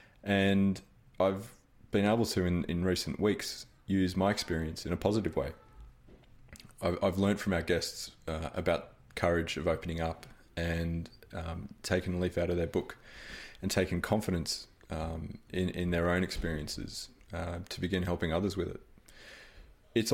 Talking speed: 160 wpm